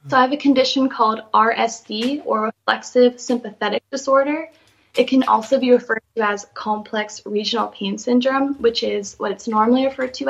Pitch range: 210-250 Hz